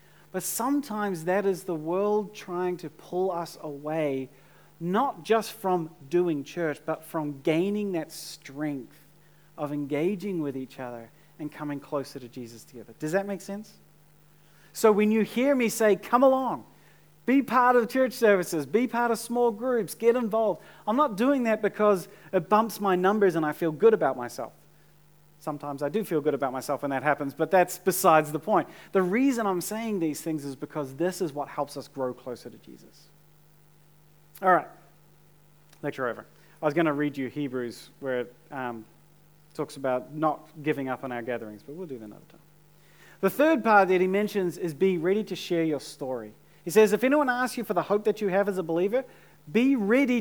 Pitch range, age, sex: 150-210 Hz, 40-59, male